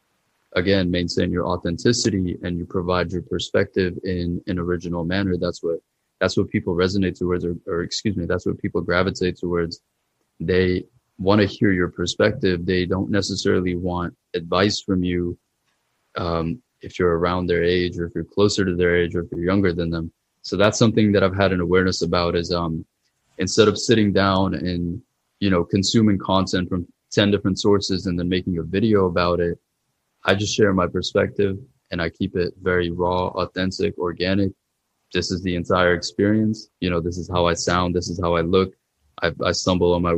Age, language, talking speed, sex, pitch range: 20-39, English, 190 wpm, male, 85-100 Hz